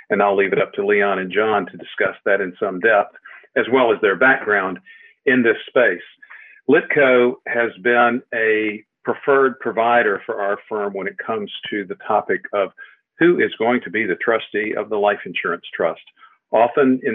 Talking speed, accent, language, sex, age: 185 wpm, American, English, male, 50-69